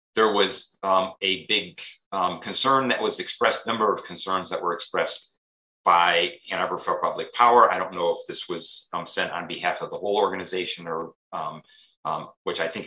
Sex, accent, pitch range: male, American, 95-130 Hz